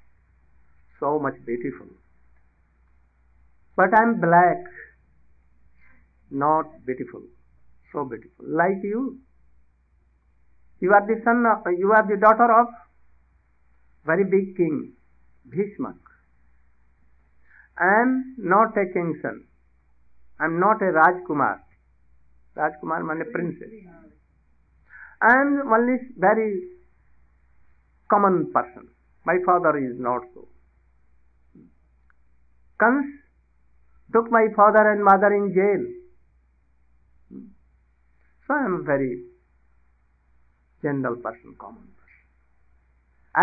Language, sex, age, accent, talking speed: English, male, 60-79, Indian, 95 wpm